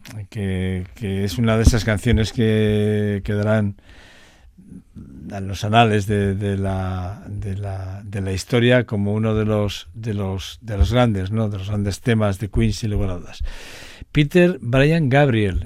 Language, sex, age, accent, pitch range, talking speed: Spanish, male, 60-79, Spanish, 95-115 Hz, 155 wpm